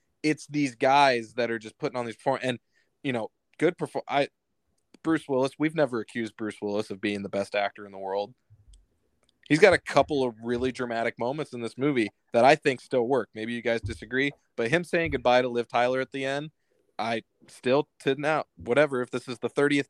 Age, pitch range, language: 20-39, 115-140 Hz, English